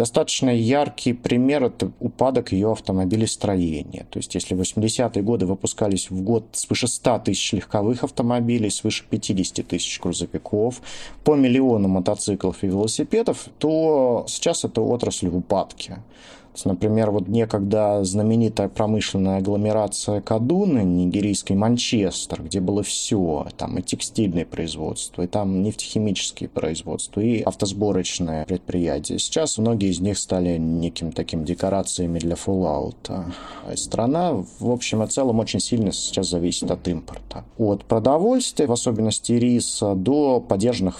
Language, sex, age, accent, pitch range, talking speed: Russian, male, 30-49, native, 95-115 Hz, 125 wpm